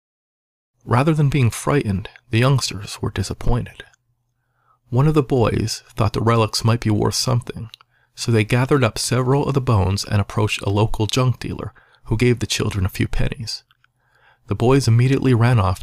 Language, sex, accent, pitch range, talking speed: English, male, American, 105-125 Hz, 170 wpm